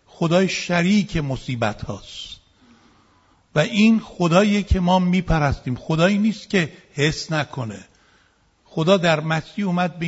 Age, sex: 60-79, male